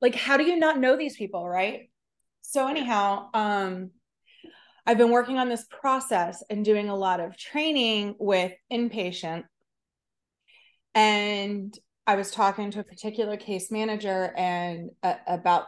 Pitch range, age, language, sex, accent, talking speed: 190-235 Hz, 30-49, English, female, American, 145 wpm